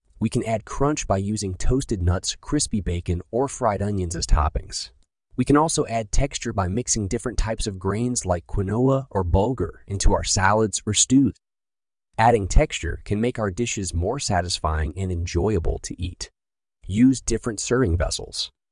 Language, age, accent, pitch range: English, 30-49, American, 90-120 Hz